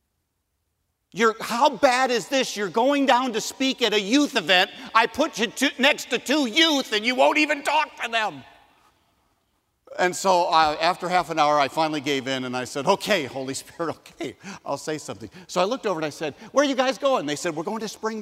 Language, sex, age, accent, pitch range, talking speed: English, male, 50-69, American, 150-230 Hz, 215 wpm